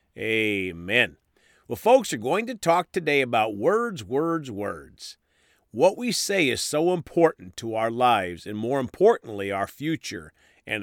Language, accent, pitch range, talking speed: English, American, 105-155 Hz, 150 wpm